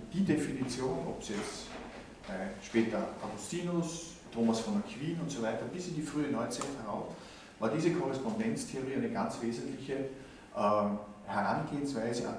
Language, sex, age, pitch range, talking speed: German, male, 50-69, 115-175 Hz, 130 wpm